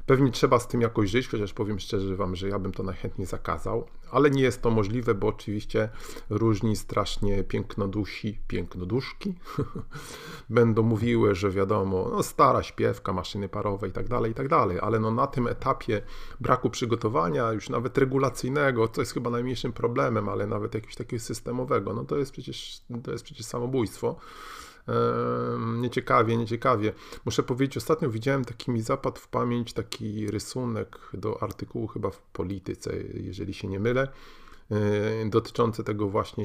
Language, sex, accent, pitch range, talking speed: Polish, male, native, 100-120 Hz, 155 wpm